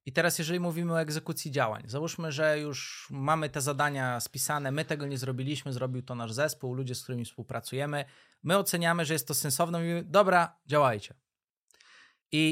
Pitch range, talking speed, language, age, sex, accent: 140-175 Hz, 175 wpm, Polish, 20-39, male, native